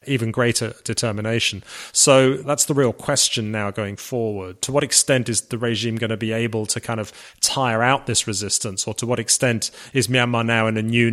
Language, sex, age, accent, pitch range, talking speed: English, male, 30-49, British, 105-125 Hz, 205 wpm